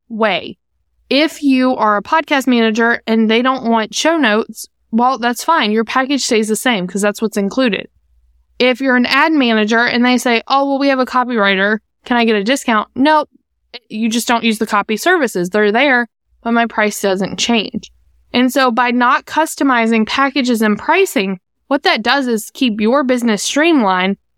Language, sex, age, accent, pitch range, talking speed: English, female, 20-39, American, 215-260 Hz, 185 wpm